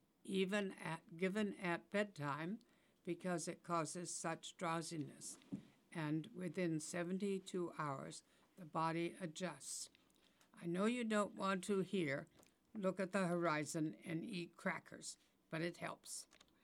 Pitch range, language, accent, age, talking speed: 165-190 Hz, English, American, 60-79, 120 wpm